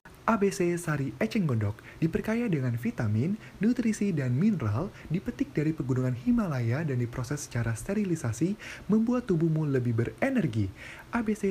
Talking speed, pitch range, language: 120 wpm, 115-140 Hz, Indonesian